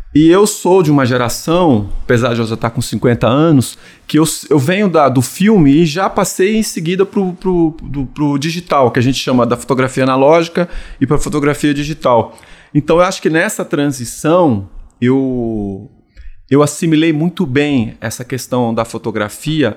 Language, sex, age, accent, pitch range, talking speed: Portuguese, male, 30-49, Brazilian, 120-155 Hz, 170 wpm